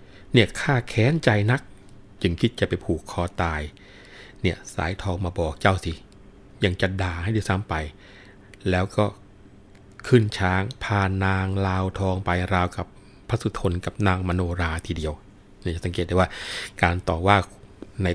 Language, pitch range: Thai, 90-105 Hz